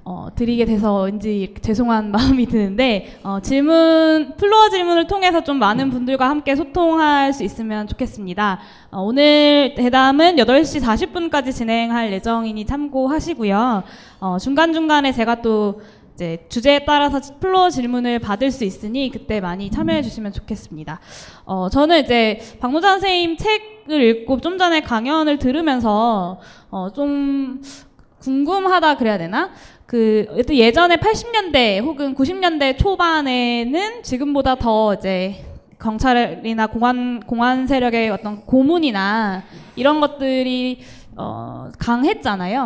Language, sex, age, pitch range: Korean, female, 20-39, 220-300 Hz